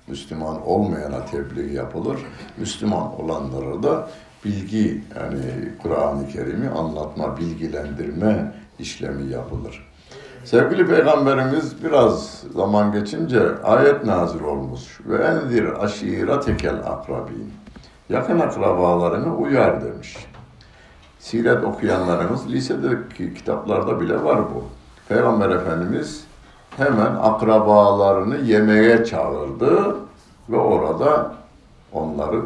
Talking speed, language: 85 wpm, Turkish